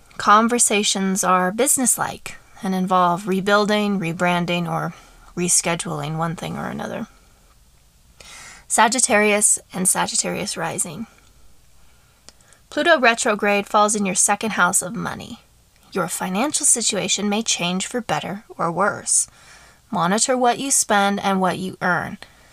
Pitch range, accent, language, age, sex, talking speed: 180-215 Hz, American, English, 20-39, female, 115 wpm